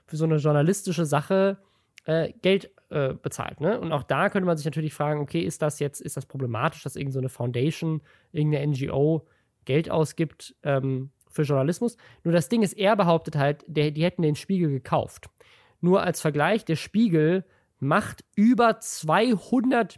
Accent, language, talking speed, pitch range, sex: German, German, 170 wpm, 145-185 Hz, male